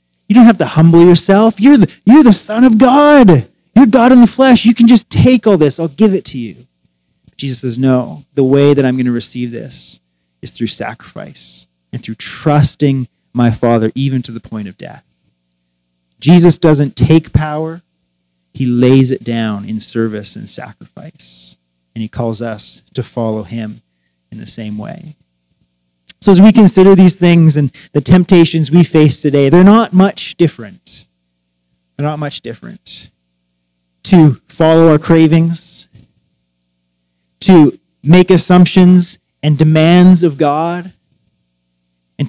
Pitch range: 100-165 Hz